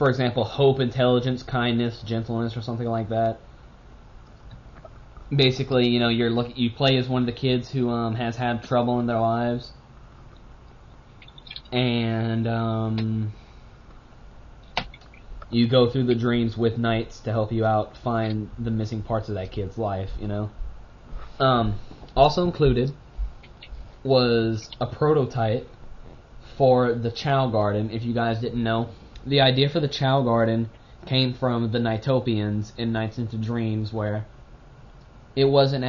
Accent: American